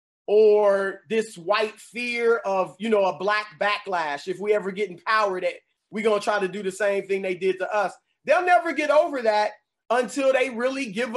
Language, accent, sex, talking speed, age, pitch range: English, American, male, 205 wpm, 30-49, 205-255 Hz